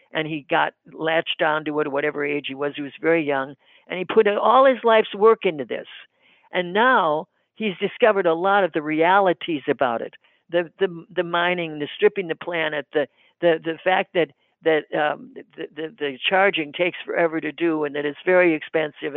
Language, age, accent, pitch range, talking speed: English, 60-79, American, 160-215 Hz, 200 wpm